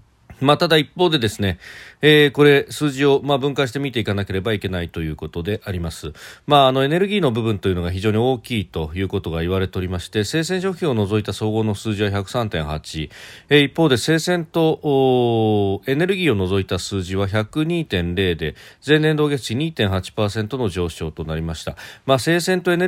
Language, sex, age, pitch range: Japanese, male, 40-59, 100-140 Hz